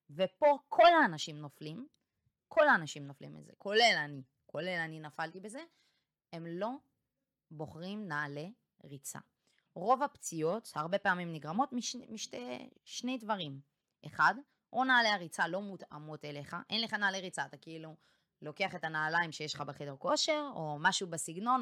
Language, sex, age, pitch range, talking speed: Hebrew, female, 20-39, 155-225 Hz, 140 wpm